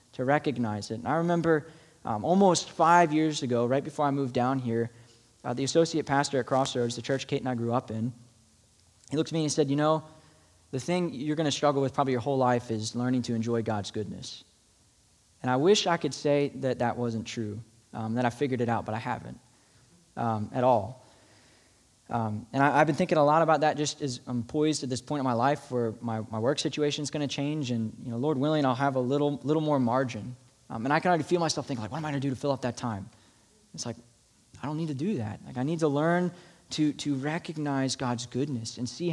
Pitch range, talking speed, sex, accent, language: 120-155 Hz, 240 wpm, male, American, English